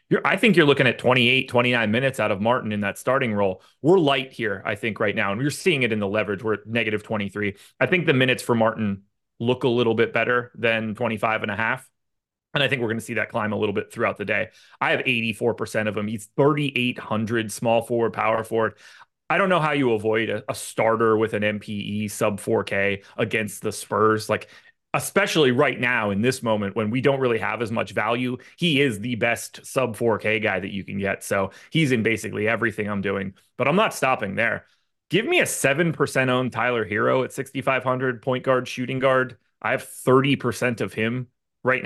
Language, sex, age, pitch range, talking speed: English, male, 30-49, 110-130 Hz, 215 wpm